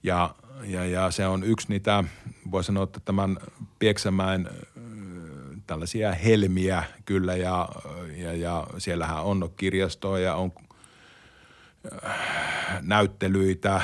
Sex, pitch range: male, 90-105 Hz